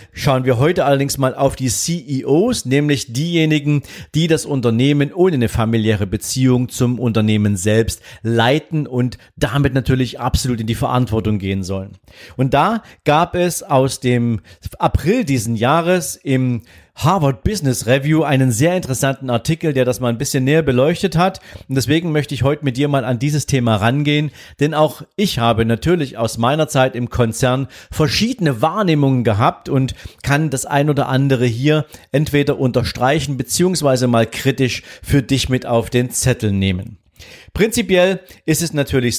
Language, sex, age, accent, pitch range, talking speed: German, male, 40-59, German, 120-150 Hz, 160 wpm